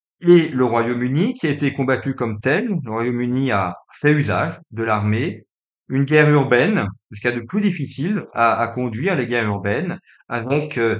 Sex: male